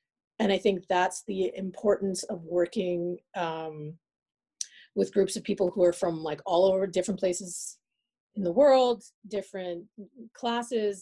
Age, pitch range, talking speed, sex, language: 30-49, 175-225 Hz, 140 wpm, female, English